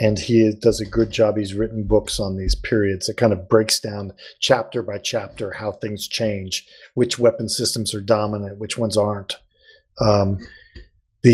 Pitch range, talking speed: 105-125 Hz, 175 wpm